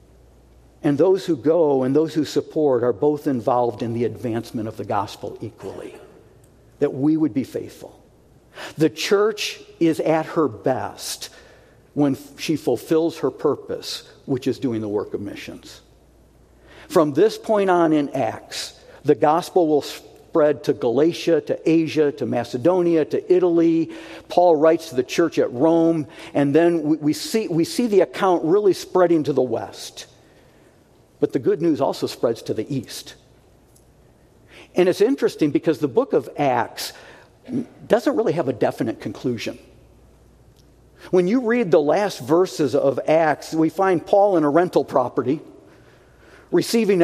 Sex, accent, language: male, American, English